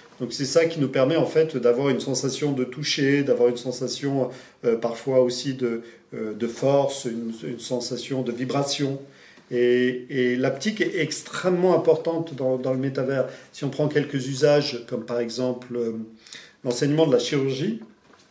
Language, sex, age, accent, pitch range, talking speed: French, male, 40-59, French, 120-150 Hz, 155 wpm